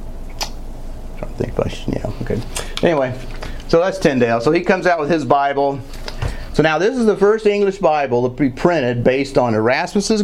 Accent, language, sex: American, English, male